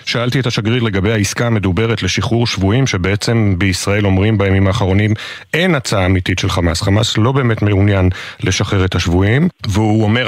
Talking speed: 160 wpm